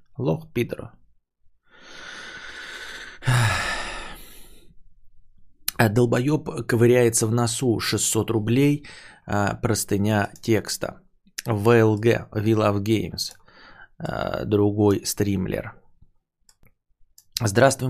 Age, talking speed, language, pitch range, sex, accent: 20-39, 55 wpm, Russian, 110-135 Hz, male, native